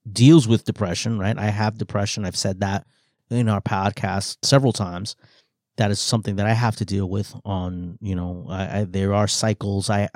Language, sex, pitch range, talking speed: English, male, 110-140 Hz, 185 wpm